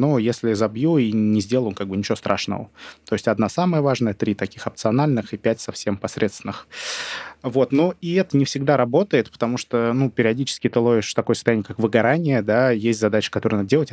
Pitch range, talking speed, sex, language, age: 110-130 Hz, 195 wpm, male, Russian, 20-39